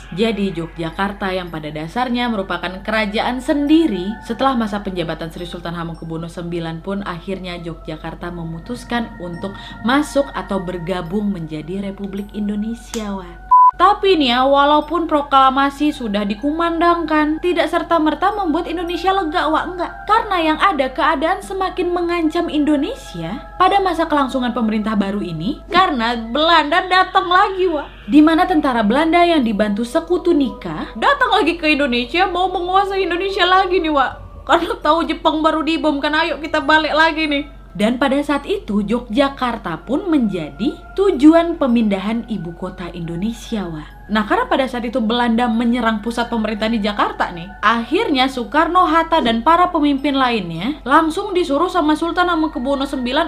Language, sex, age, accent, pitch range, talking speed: Indonesian, female, 20-39, native, 210-335 Hz, 145 wpm